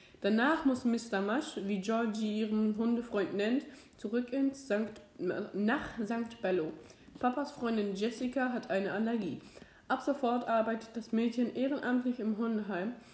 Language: German